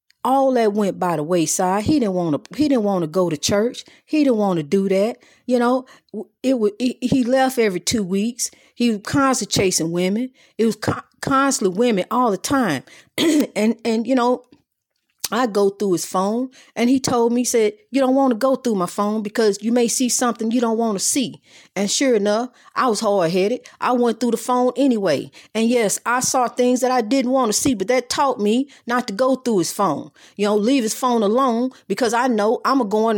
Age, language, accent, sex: 40-59, English, American, female